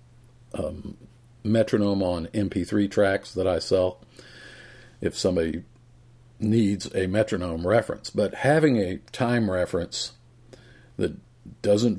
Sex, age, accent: male, 50-69, American